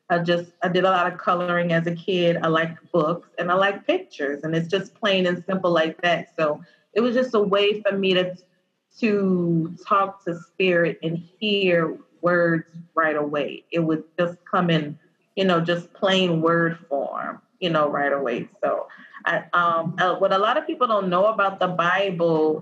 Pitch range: 165-185 Hz